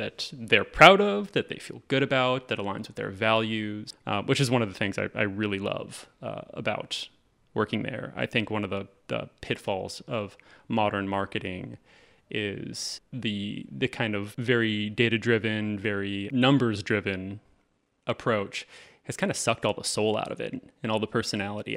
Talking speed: 175 wpm